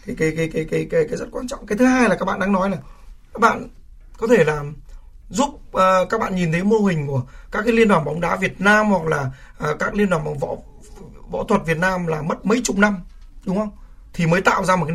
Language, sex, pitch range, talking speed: Vietnamese, male, 155-230 Hz, 265 wpm